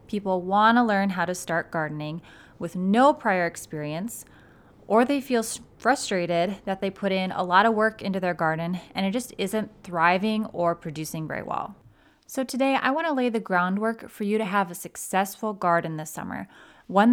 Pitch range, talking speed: 175-225 Hz, 190 wpm